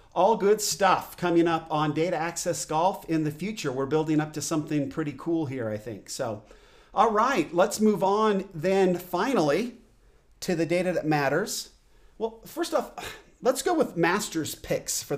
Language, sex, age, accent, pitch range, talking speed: English, male, 40-59, American, 155-195 Hz, 175 wpm